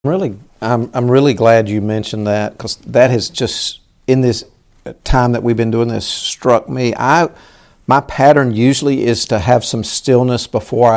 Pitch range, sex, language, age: 110-140 Hz, male, English, 50-69